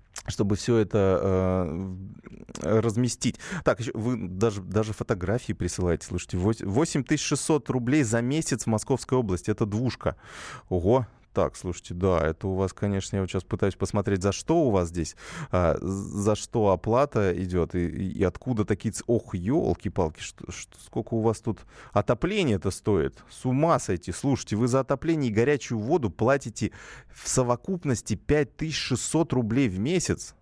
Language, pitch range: Russian, 95-125 Hz